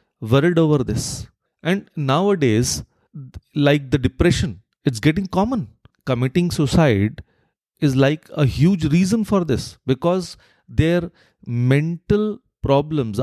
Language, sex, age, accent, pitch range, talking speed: English, male, 40-59, Indian, 125-170 Hz, 110 wpm